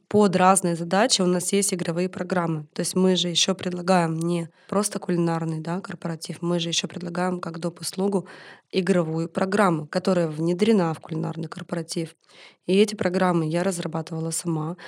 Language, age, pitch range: Russian, 20-39, 175-205 Hz